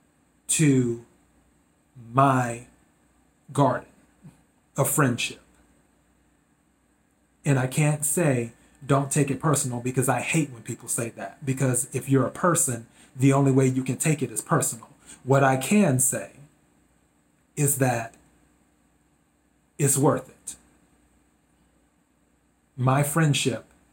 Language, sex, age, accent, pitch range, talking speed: English, male, 30-49, American, 120-140 Hz, 115 wpm